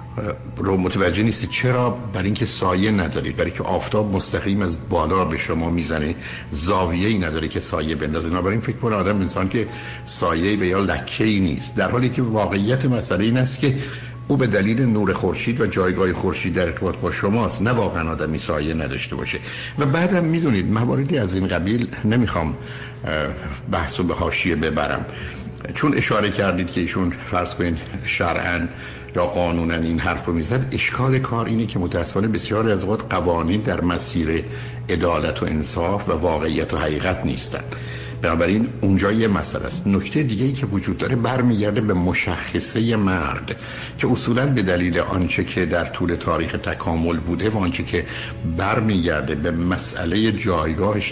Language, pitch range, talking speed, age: Persian, 85-115 Hz, 155 wpm, 60-79